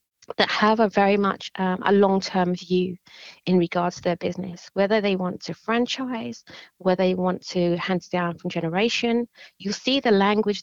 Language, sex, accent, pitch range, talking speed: English, female, British, 175-195 Hz, 175 wpm